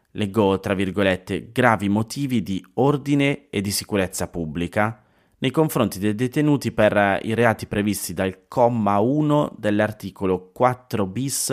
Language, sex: Italian, male